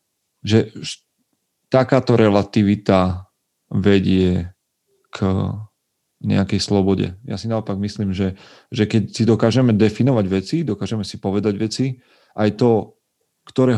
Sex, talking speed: male, 110 wpm